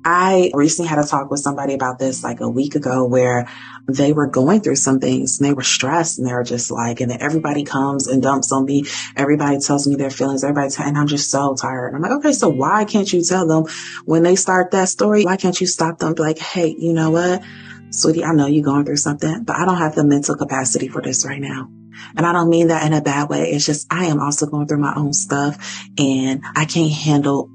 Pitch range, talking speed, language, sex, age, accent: 135-165 Hz, 255 wpm, English, female, 30-49, American